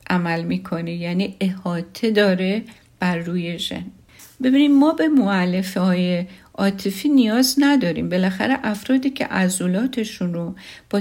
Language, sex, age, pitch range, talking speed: Persian, female, 50-69, 180-240 Hz, 120 wpm